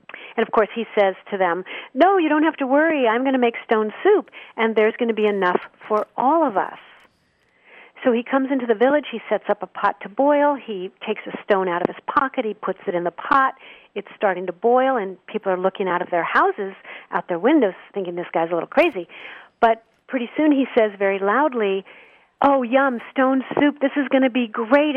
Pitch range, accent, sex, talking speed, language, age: 200-265 Hz, American, female, 225 wpm, English, 50-69